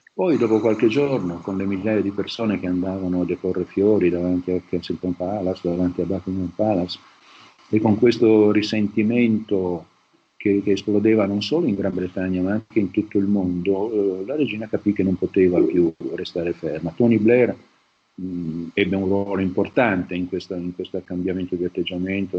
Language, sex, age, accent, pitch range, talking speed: Italian, male, 50-69, native, 90-100 Hz, 165 wpm